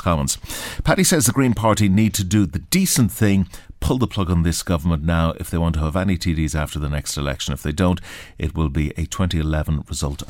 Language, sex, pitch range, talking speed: English, male, 80-100 Hz, 225 wpm